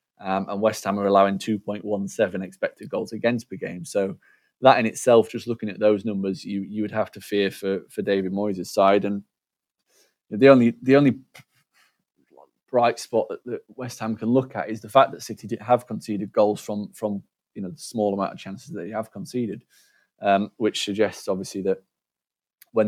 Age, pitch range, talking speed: 20-39, 100-120 Hz, 190 wpm